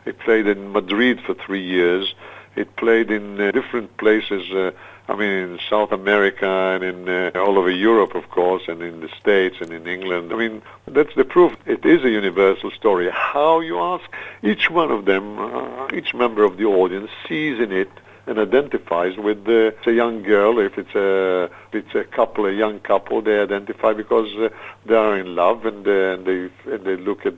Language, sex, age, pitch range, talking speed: Hebrew, male, 60-79, 95-115 Hz, 205 wpm